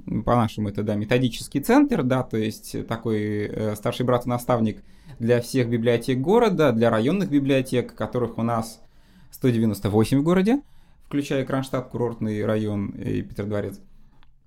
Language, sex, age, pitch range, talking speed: Russian, male, 20-39, 110-135 Hz, 135 wpm